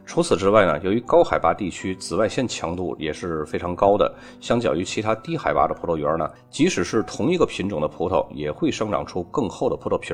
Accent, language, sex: native, Chinese, male